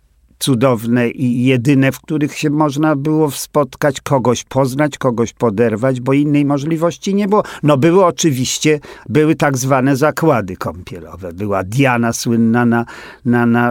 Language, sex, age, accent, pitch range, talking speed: Polish, male, 50-69, native, 115-145 Hz, 140 wpm